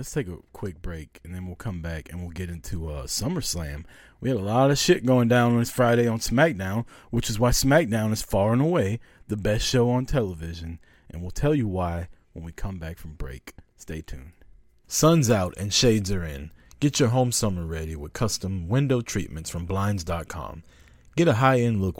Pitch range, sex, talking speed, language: 85-110 Hz, male, 215 wpm, English